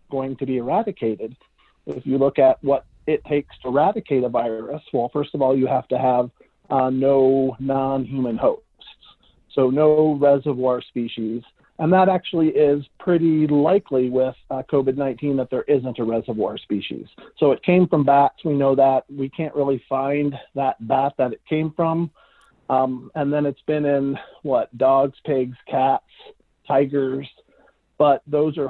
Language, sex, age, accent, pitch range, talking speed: English, male, 40-59, American, 130-150 Hz, 165 wpm